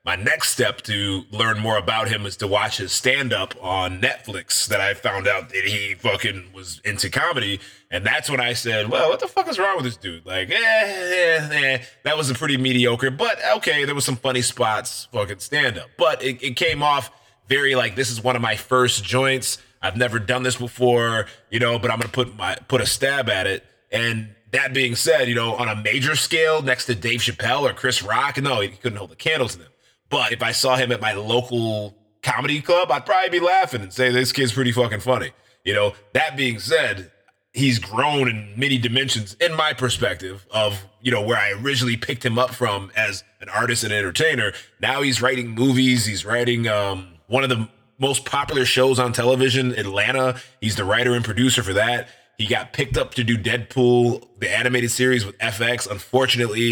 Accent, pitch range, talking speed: American, 115-130 Hz, 215 wpm